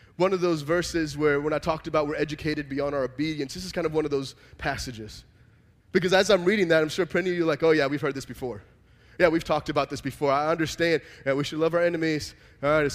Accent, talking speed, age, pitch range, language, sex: American, 270 wpm, 20-39, 145-180 Hz, English, male